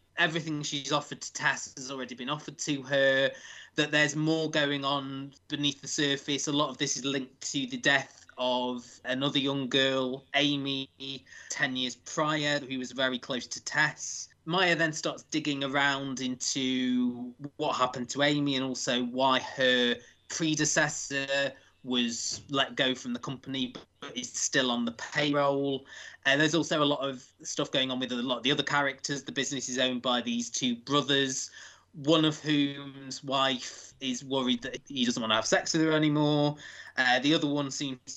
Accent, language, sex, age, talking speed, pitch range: British, English, male, 20-39, 180 wpm, 125-150 Hz